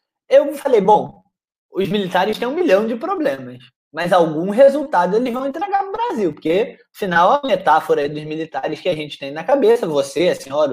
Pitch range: 180-300 Hz